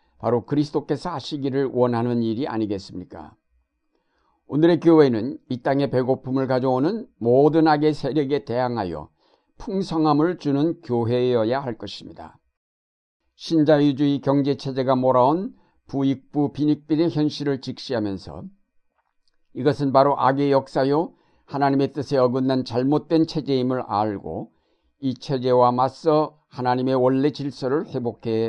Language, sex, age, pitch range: Korean, male, 60-79, 120-150 Hz